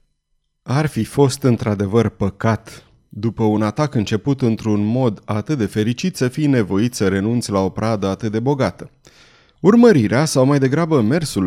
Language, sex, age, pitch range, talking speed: Romanian, male, 30-49, 105-155 Hz, 155 wpm